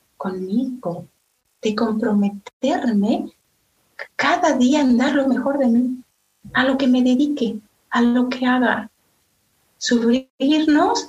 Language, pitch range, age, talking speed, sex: Spanish, 210-270 Hz, 40-59, 115 wpm, female